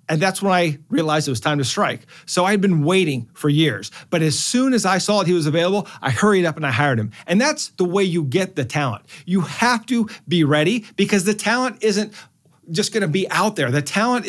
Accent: American